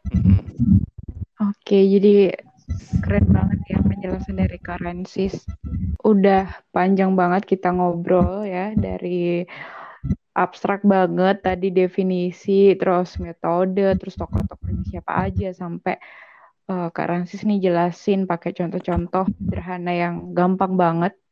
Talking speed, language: 105 wpm, Indonesian